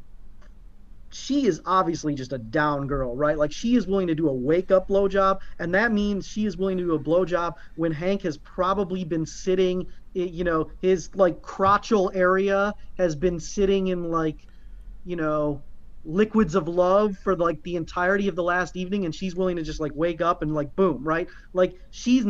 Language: English